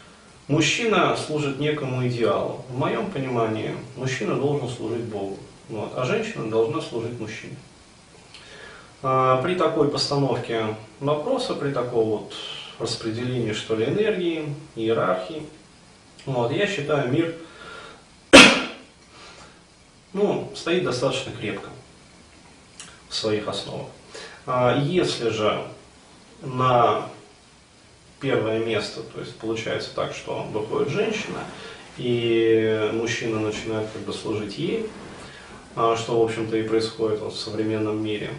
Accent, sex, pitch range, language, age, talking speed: native, male, 110-140 Hz, Russian, 30-49, 105 wpm